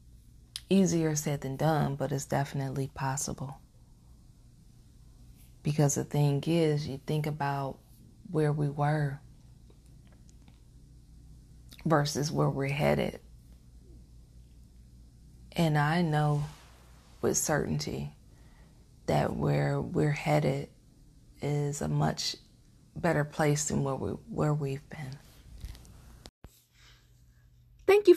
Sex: female